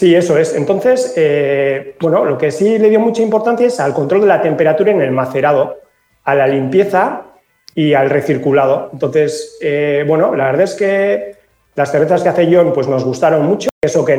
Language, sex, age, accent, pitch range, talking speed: Spanish, male, 30-49, Spanish, 140-195 Hz, 195 wpm